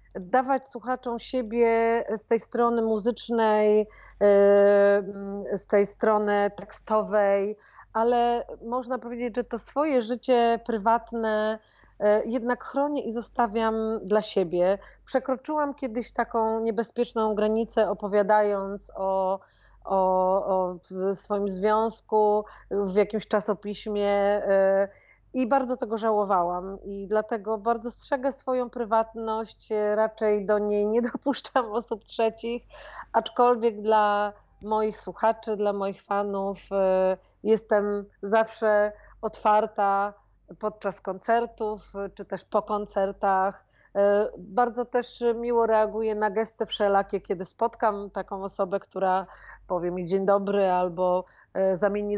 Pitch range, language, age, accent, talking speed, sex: 195-225 Hz, Polish, 30-49, native, 105 wpm, female